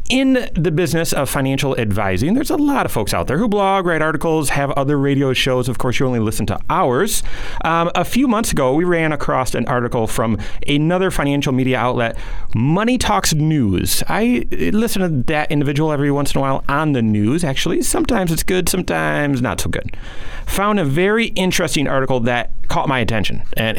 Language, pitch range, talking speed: English, 110-165 Hz, 195 wpm